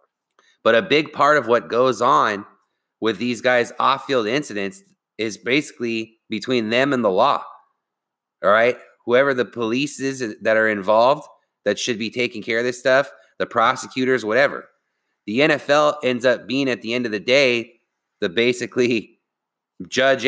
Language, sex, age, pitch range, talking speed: English, male, 30-49, 110-135 Hz, 165 wpm